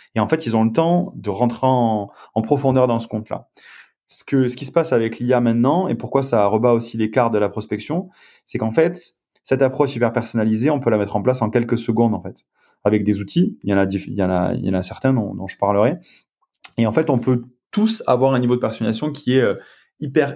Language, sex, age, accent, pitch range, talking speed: French, male, 30-49, French, 105-135 Hz, 250 wpm